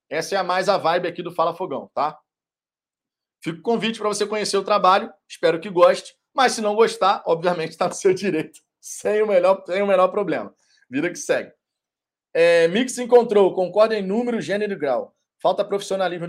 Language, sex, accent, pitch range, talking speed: Portuguese, male, Brazilian, 155-205 Hz, 185 wpm